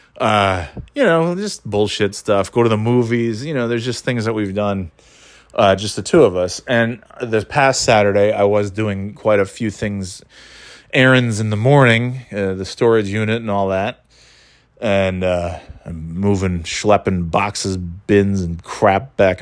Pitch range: 100-130 Hz